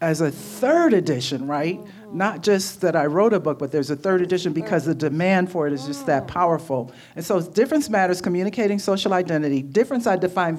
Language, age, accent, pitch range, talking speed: English, 50-69, American, 145-195 Hz, 205 wpm